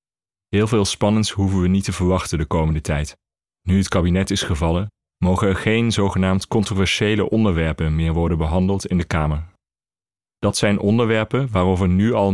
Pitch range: 85-100 Hz